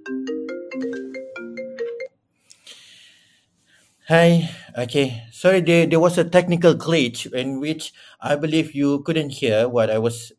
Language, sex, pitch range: Malay, male, 110-135 Hz